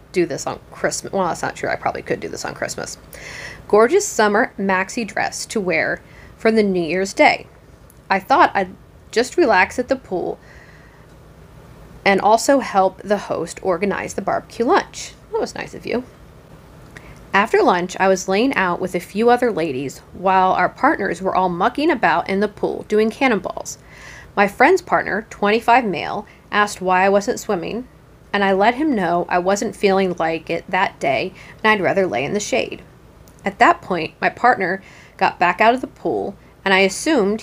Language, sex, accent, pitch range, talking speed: English, female, American, 180-225 Hz, 185 wpm